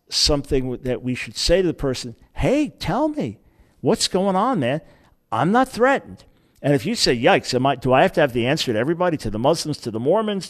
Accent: American